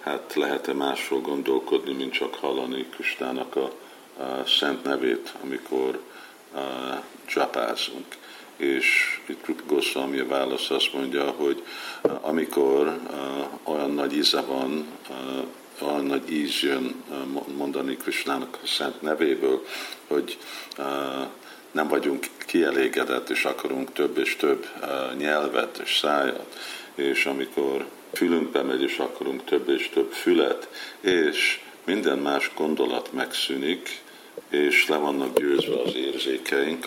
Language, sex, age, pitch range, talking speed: Hungarian, male, 50-69, 360-400 Hz, 125 wpm